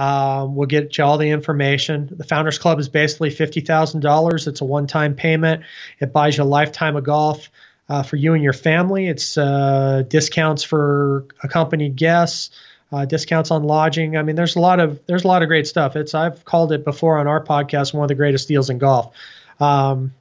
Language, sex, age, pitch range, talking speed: English, male, 30-49, 140-160 Hz, 210 wpm